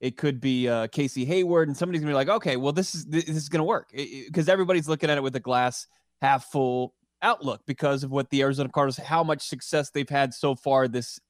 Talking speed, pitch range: 235 wpm, 125-155 Hz